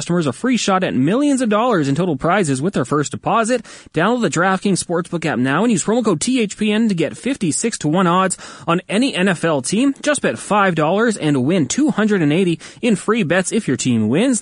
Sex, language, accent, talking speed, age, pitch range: male, English, American, 205 wpm, 30-49, 135-195 Hz